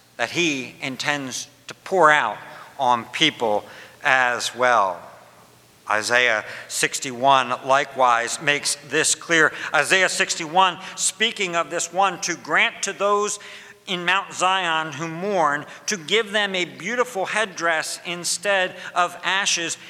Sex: male